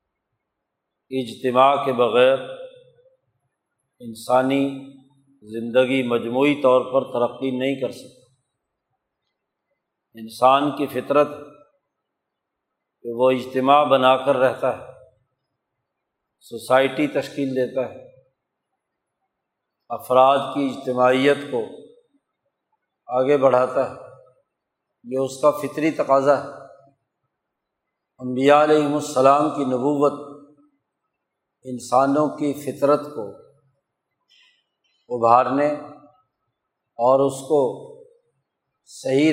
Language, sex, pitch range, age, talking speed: Urdu, male, 130-150 Hz, 50-69, 80 wpm